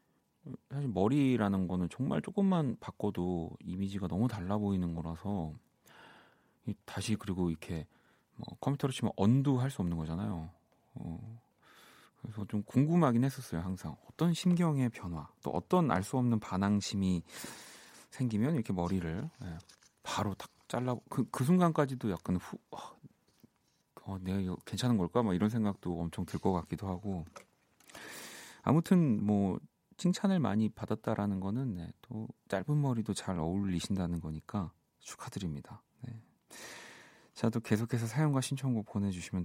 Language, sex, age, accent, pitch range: Korean, male, 30-49, native, 90-130 Hz